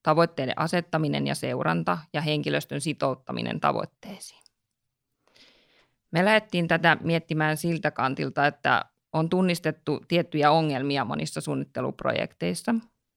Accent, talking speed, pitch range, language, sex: native, 95 wpm, 140-165 Hz, Finnish, female